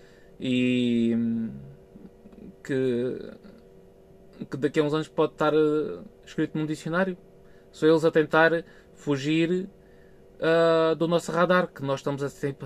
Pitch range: 120-170 Hz